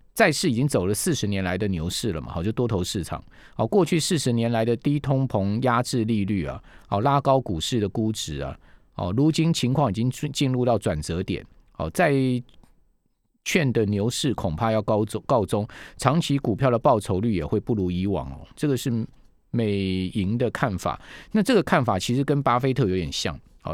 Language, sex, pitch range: Chinese, male, 100-130 Hz